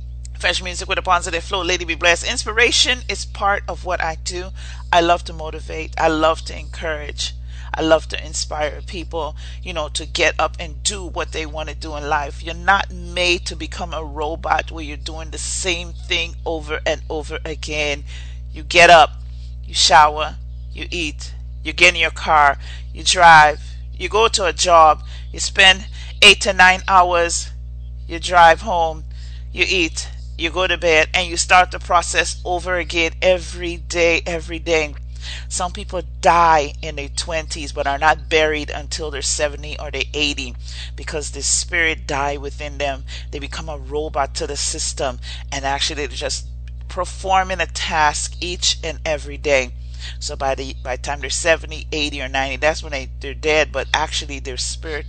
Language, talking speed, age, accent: English, 180 wpm, 40-59, American